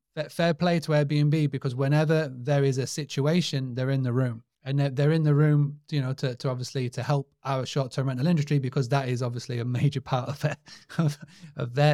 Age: 30-49